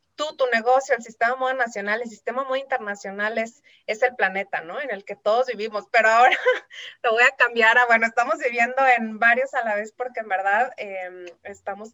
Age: 30-49